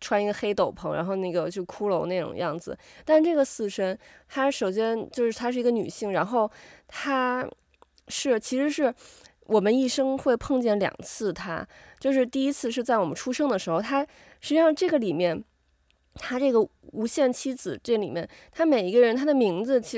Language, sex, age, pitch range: Chinese, female, 20-39, 200-270 Hz